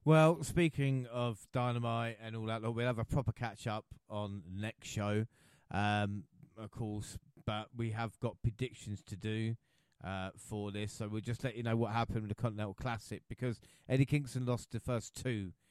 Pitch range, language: 105-125 Hz, English